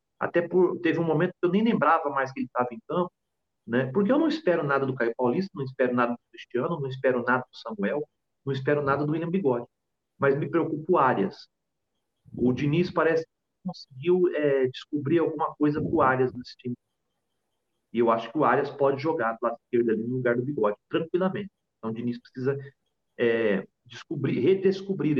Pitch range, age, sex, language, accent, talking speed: 125-175 Hz, 40-59, male, Portuguese, Brazilian, 200 wpm